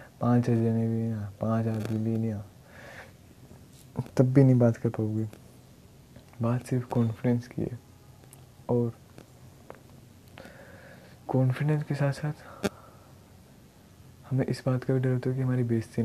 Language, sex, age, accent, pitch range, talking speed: Hindi, male, 20-39, native, 115-125 Hz, 135 wpm